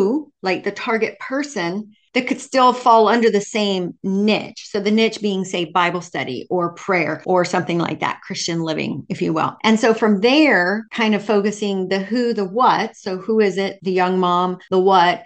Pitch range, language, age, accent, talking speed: 185-230 Hz, English, 40-59, American, 195 wpm